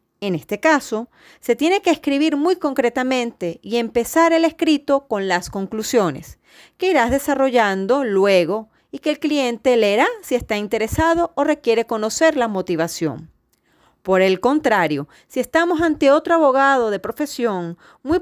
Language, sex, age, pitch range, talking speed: Spanish, female, 40-59, 200-295 Hz, 145 wpm